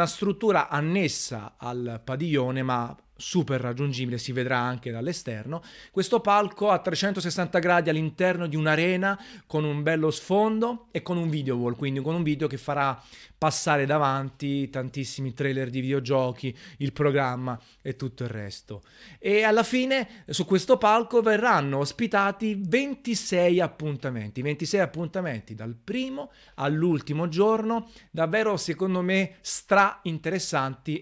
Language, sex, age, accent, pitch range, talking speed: Italian, male, 30-49, native, 135-180 Hz, 130 wpm